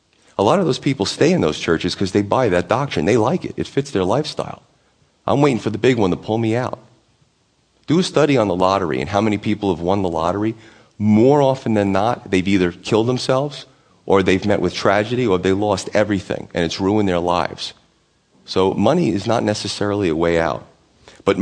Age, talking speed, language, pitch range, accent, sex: 40-59, 215 wpm, English, 95-115 Hz, American, male